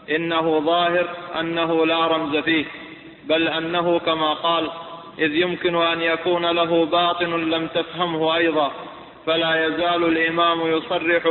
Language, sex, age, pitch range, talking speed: Arabic, male, 20-39, 165-175 Hz, 120 wpm